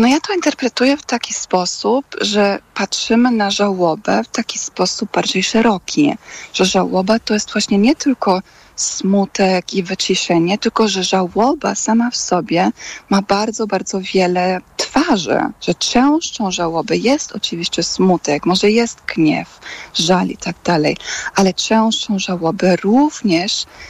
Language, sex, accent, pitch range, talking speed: Polish, female, native, 190-230 Hz, 135 wpm